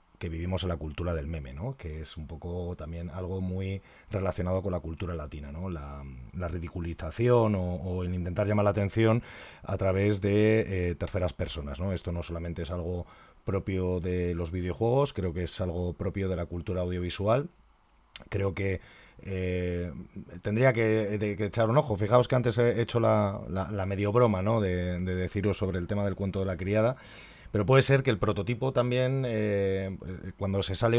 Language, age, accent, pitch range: Spanish, 30-49, Spanish, 90-105 Hz